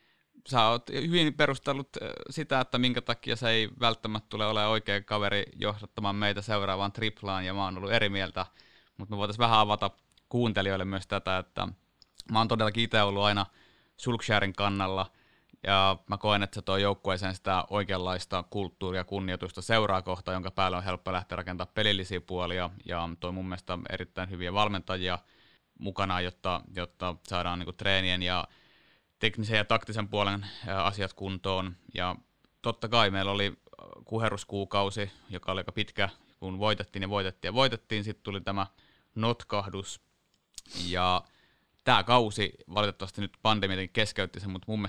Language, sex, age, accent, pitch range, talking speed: Finnish, male, 20-39, native, 90-105 Hz, 150 wpm